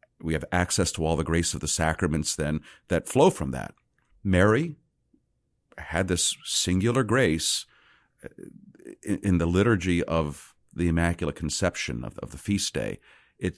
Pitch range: 85-120 Hz